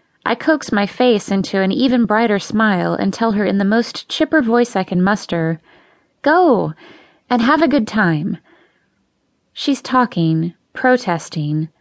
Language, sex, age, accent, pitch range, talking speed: English, female, 20-39, American, 180-235 Hz, 145 wpm